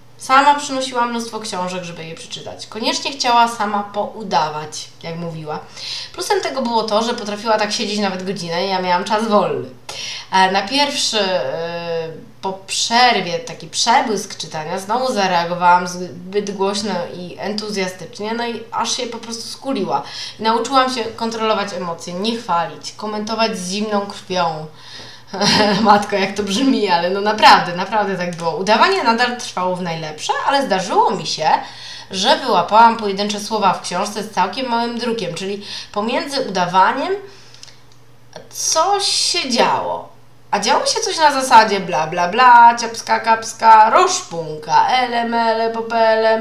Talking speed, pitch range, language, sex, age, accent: 140 wpm, 180-235 Hz, Polish, female, 20-39, native